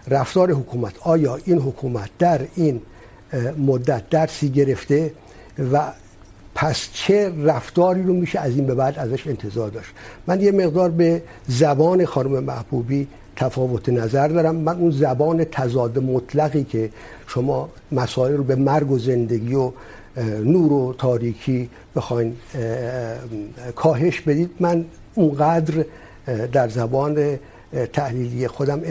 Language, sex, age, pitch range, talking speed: Urdu, male, 50-69, 125-160 Hz, 120 wpm